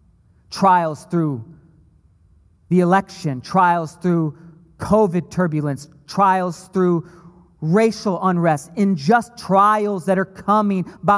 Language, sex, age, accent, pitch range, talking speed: English, male, 40-59, American, 150-215 Hz, 90 wpm